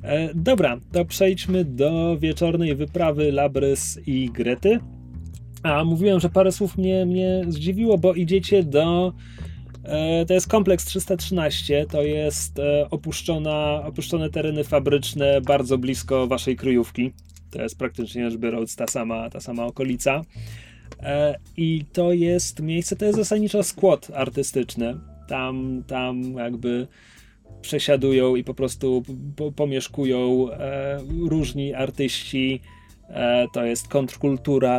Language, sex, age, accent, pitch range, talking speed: Polish, male, 30-49, native, 120-160 Hz, 120 wpm